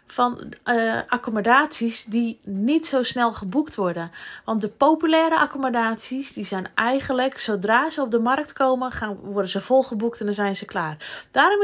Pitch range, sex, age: 220-280 Hz, female, 20-39